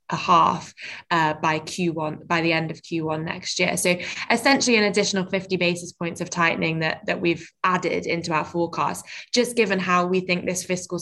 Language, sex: English, female